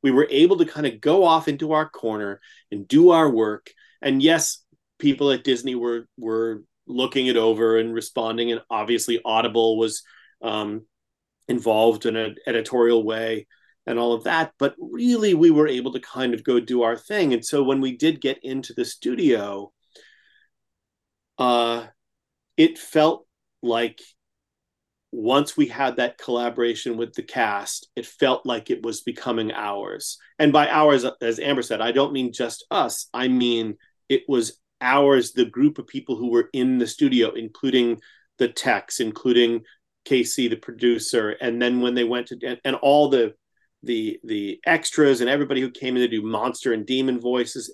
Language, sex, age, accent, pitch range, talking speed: English, male, 30-49, American, 115-140 Hz, 170 wpm